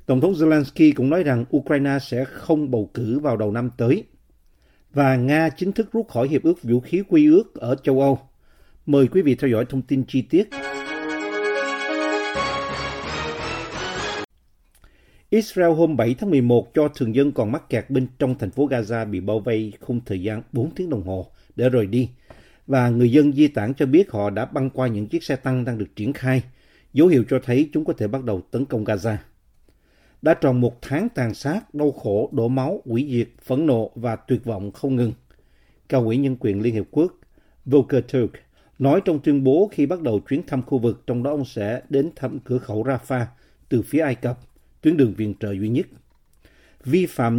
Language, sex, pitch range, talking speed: Vietnamese, male, 110-140 Hz, 200 wpm